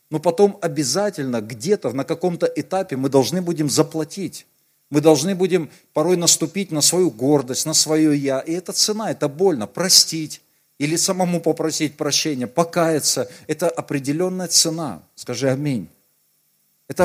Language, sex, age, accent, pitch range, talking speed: Russian, male, 40-59, native, 145-180 Hz, 135 wpm